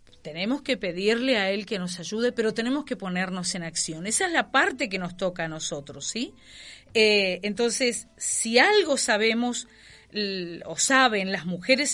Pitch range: 185-250 Hz